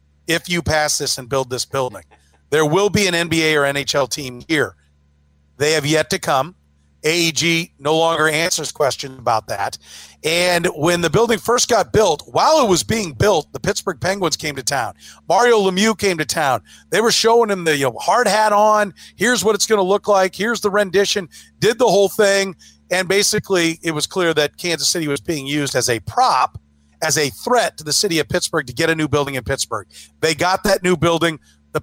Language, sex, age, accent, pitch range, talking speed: English, male, 40-59, American, 140-180 Hz, 205 wpm